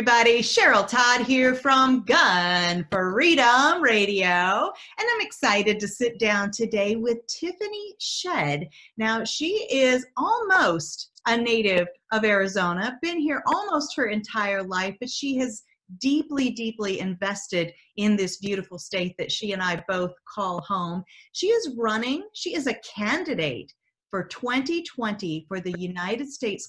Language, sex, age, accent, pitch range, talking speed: English, female, 30-49, American, 195-255 Hz, 135 wpm